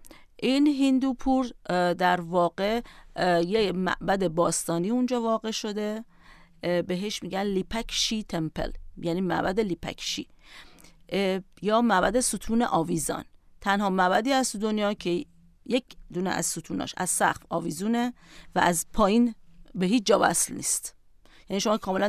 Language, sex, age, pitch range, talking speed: Persian, female, 40-59, 185-240 Hz, 120 wpm